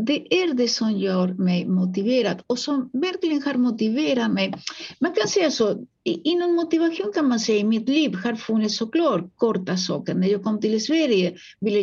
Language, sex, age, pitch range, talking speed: Swedish, female, 50-69, 200-275 Hz, 185 wpm